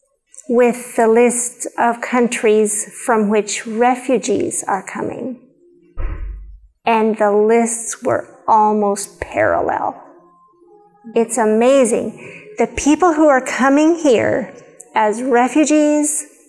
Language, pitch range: English, 230-290 Hz